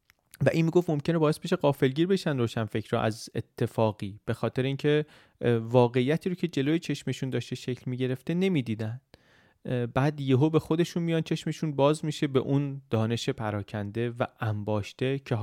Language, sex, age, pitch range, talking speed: Persian, male, 30-49, 110-140 Hz, 165 wpm